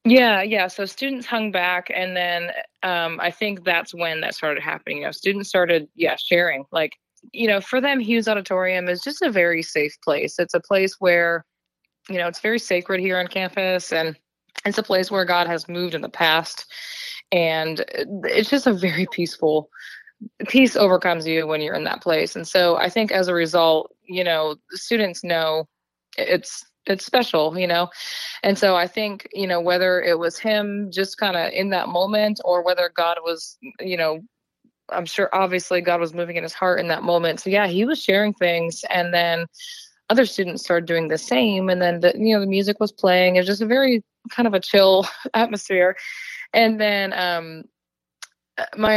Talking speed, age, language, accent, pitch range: 195 wpm, 20-39, English, American, 170-215 Hz